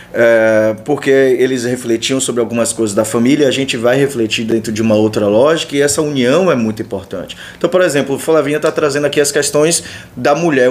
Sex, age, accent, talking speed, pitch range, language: male, 20-39, Brazilian, 200 wpm, 115-160 Hz, Portuguese